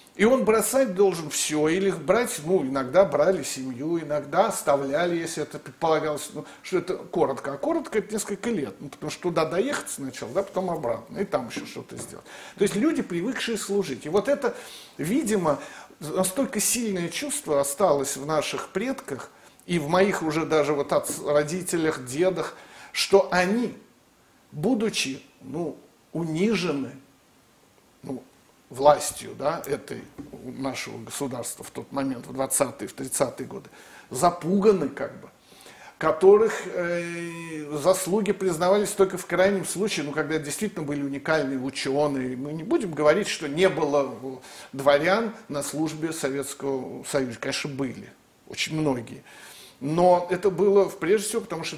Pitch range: 140-195 Hz